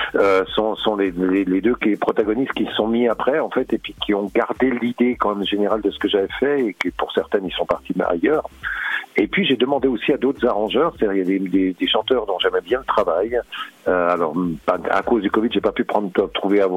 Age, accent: 50-69, French